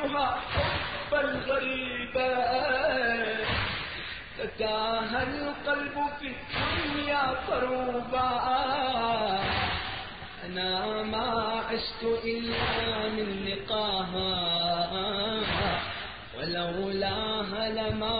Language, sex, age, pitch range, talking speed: Arabic, male, 40-59, 190-250 Hz, 50 wpm